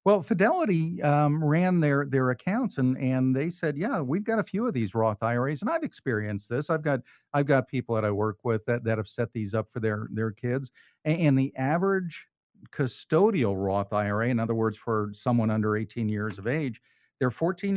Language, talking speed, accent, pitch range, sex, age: English, 205 wpm, American, 115-155 Hz, male, 50-69